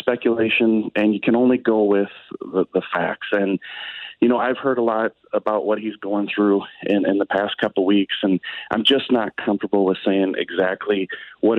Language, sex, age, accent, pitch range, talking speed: English, male, 40-59, American, 105-120 Hz, 195 wpm